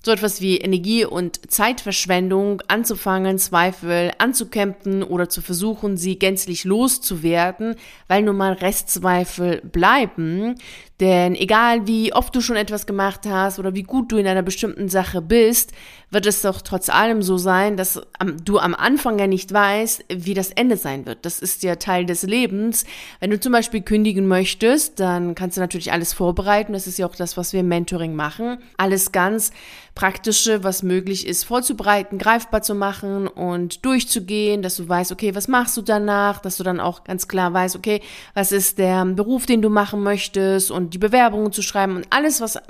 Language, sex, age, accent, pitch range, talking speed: German, female, 30-49, German, 185-225 Hz, 180 wpm